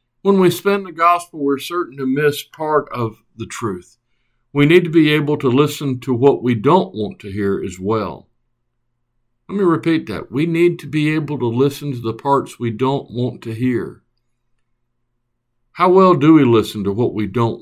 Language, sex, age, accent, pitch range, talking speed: English, male, 60-79, American, 120-145 Hz, 195 wpm